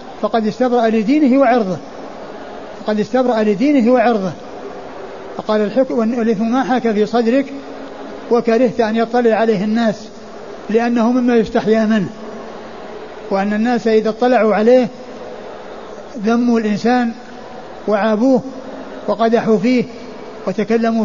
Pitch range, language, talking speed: 220-250 Hz, Arabic, 100 wpm